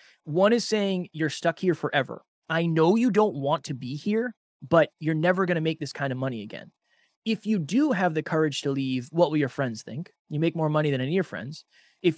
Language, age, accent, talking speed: English, 20-39, American, 240 wpm